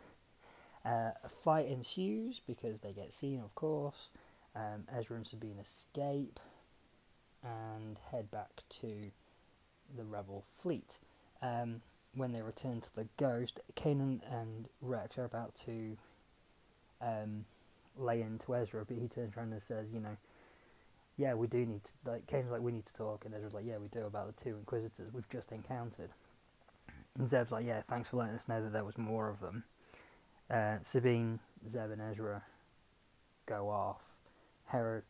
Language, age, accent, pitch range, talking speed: English, 20-39, British, 110-125 Hz, 165 wpm